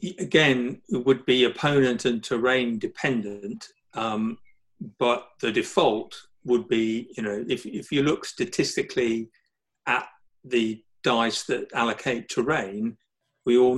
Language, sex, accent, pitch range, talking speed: English, male, British, 110-125 Hz, 125 wpm